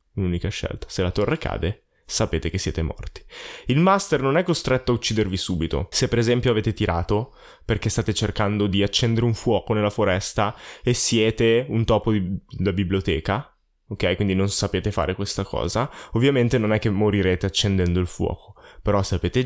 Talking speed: 175 wpm